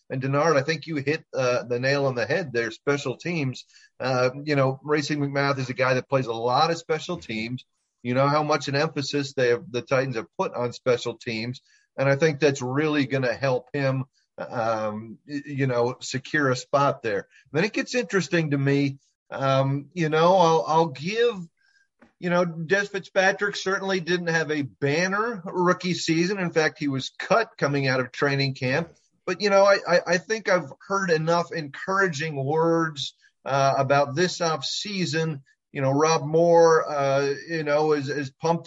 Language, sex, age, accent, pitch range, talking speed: English, male, 40-59, American, 135-175 Hz, 185 wpm